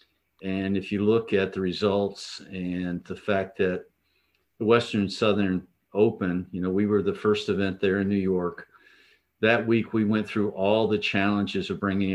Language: English